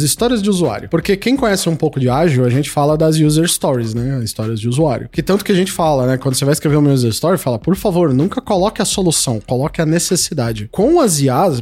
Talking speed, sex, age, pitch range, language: 245 wpm, male, 20-39, 140-205 Hz, Portuguese